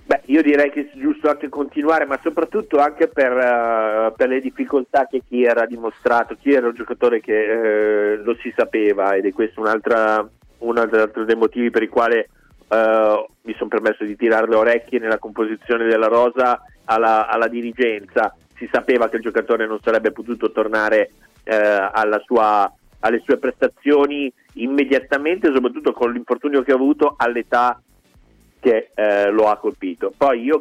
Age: 30-49